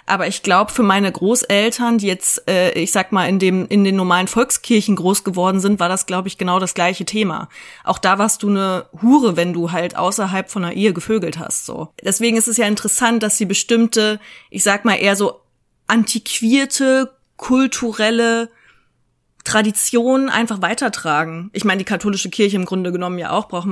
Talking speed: 185 wpm